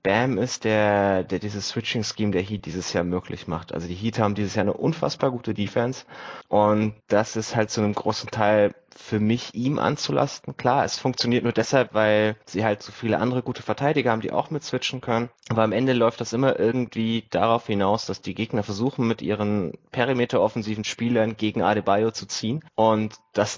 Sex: male